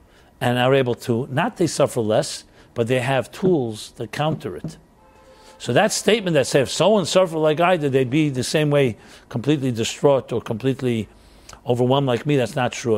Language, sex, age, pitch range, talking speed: English, male, 50-69, 110-140 Hz, 190 wpm